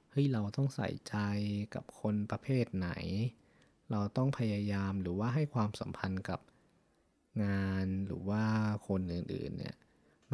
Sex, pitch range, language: male, 95-125 Hz, Thai